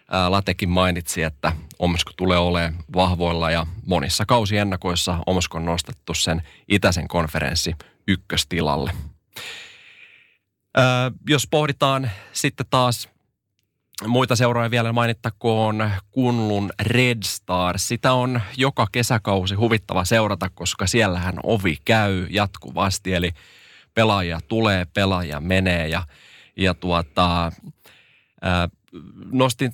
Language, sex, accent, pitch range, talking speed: Finnish, male, native, 85-110 Hz, 105 wpm